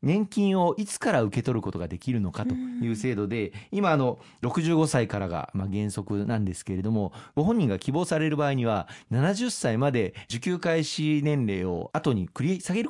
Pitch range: 100-155 Hz